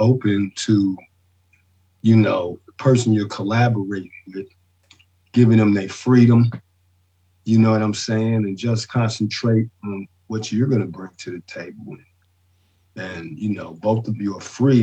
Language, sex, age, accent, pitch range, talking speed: English, male, 50-69, American, 90-115 Hz, 155 wpm